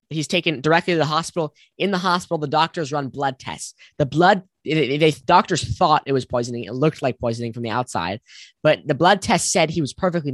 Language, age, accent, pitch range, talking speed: English, 10-29, American, 130-160 Hz, 215 wpm